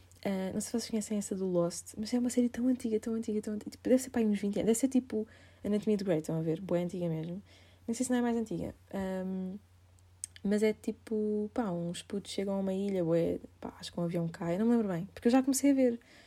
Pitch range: 180-230 Hz